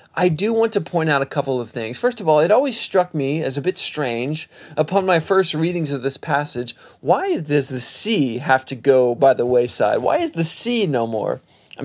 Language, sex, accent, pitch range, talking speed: English, male, American, 140-185 Hz, 235 wpm